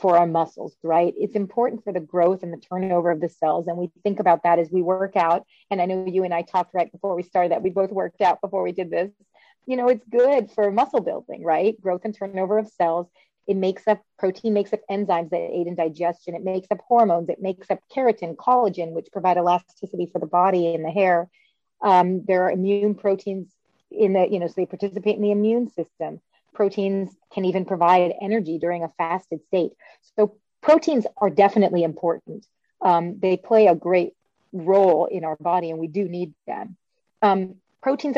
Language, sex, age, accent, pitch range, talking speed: English, female, 30-49, American, 175-205 Hz, 205 wpm